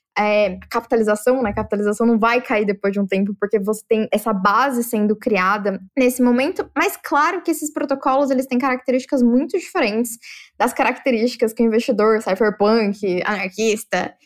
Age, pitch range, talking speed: 10-29, 210-260 Hz, 150 wpm